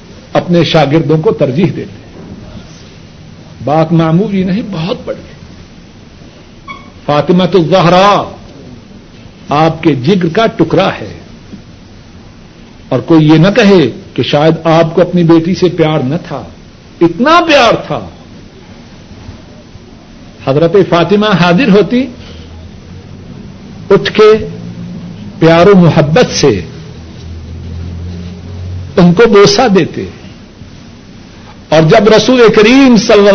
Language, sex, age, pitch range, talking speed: Urdu, male, 60-79, 125-210 Hz, 100 wpm